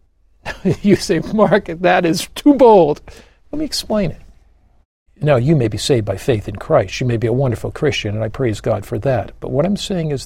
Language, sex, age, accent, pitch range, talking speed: English, male, 60-79, American, 115-165 Hz, 215 wpm